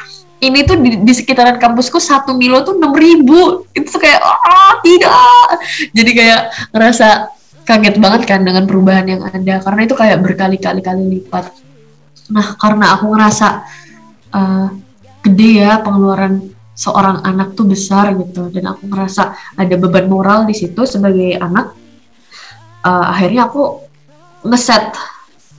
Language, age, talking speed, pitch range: Indonesian, 20-39, 135 wpm, 185-225 Hz